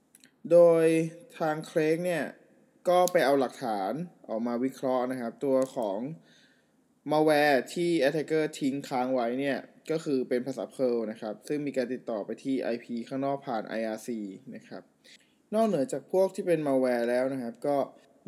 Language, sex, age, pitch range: Thai, male, 20-39, 130-170 Hz